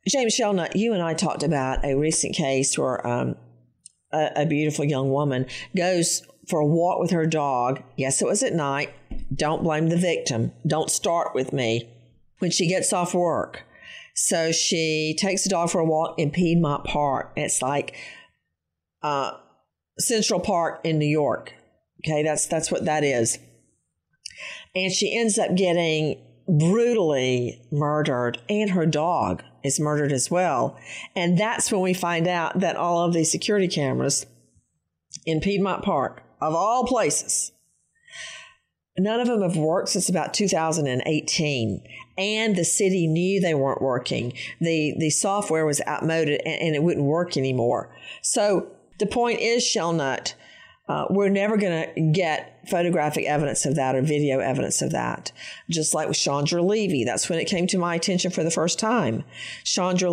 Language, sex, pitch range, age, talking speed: English, female, 150-185 Hz, 50-69, 160 wpm